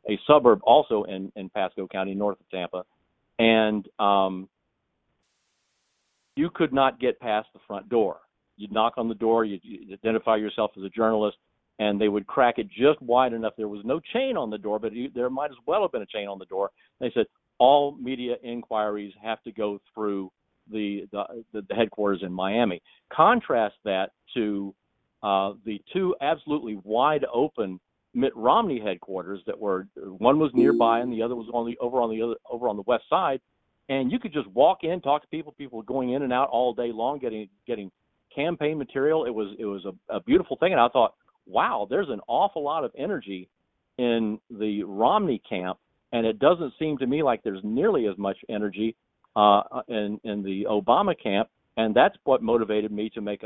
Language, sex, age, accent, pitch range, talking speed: English, male, 50-69, American, 100-120 Hz, 195 wpm